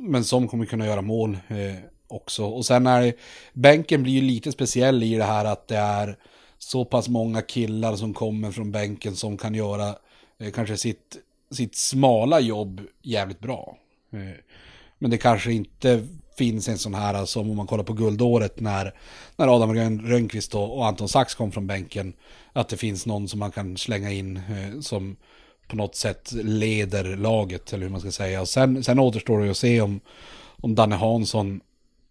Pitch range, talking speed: 100-120 Hz, 185 wpm